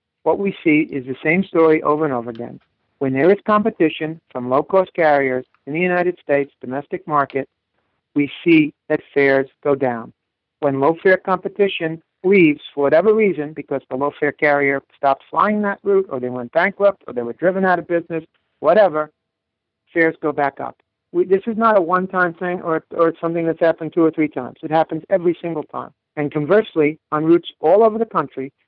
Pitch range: 140-175 Hz